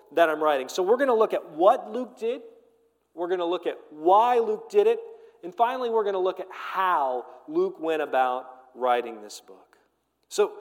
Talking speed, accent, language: 185 wpm, American, English